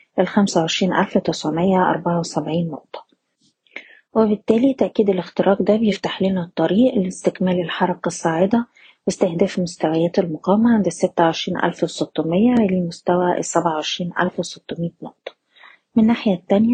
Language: Arabic